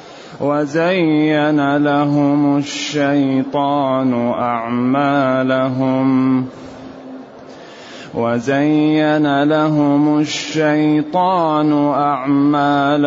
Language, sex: Arabic, male